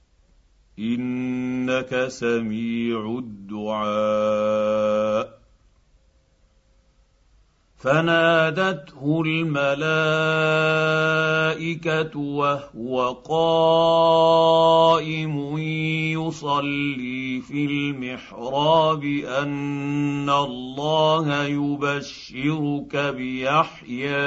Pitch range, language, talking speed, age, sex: 125-155 Hz, Arabic, 35 wpm, 50-69, male